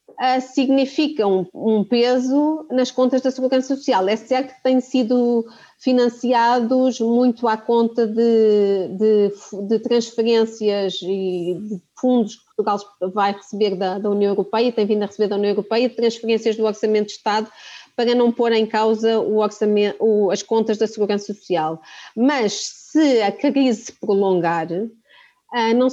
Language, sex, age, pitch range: Portuguese, female, 30-49, 205-250 Hz